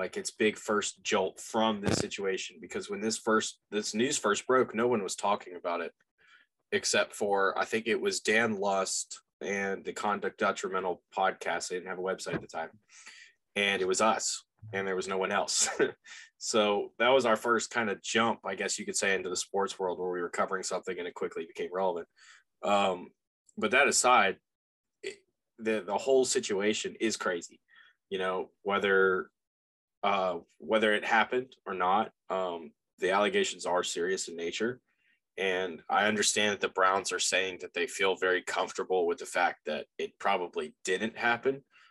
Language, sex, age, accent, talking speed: English, male, 20-39, American, 185 wpm